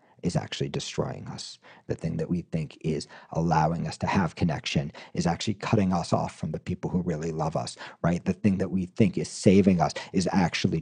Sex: male